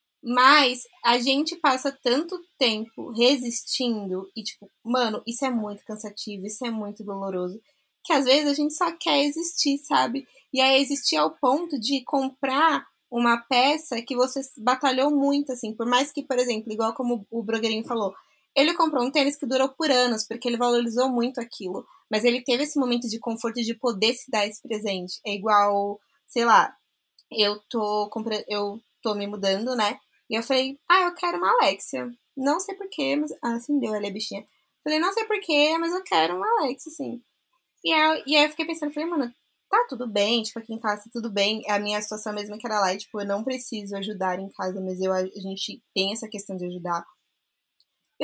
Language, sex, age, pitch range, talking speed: Portuguese, female, 20-39, 215-285 Hz, 200 wpm